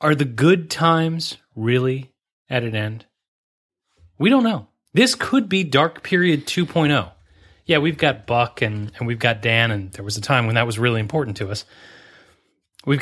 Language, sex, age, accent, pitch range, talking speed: English, male, 30-49, American, 105-145 Hz, 180 wpm